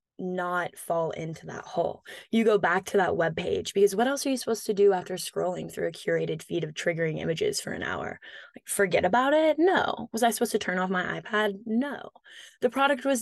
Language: English